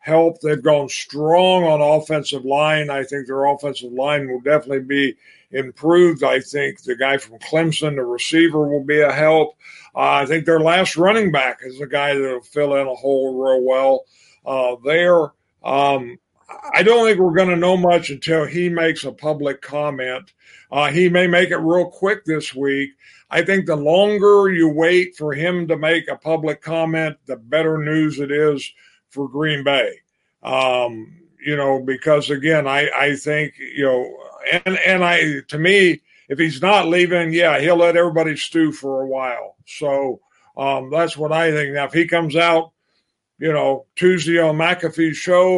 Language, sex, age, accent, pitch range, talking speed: English, male, 50-69, American, 140-170 Hz, 180 wpm